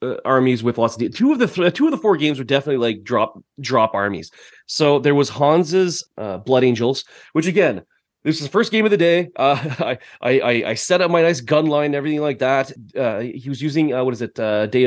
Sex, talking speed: male, 240 wpm